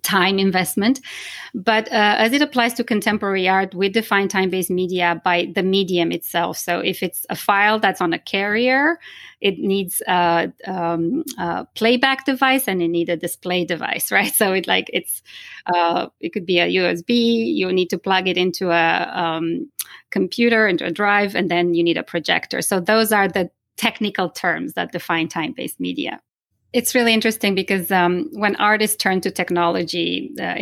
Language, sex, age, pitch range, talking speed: English, female, 20-39, 170-210 Hz, 175 wpm